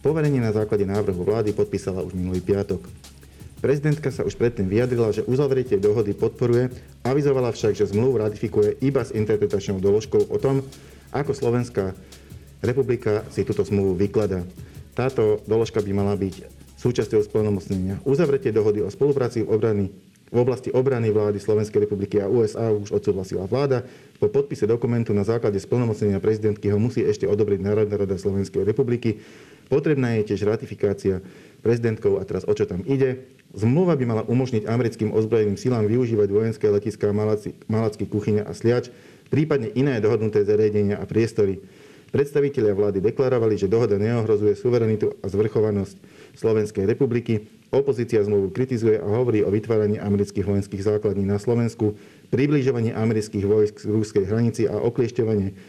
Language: Slovak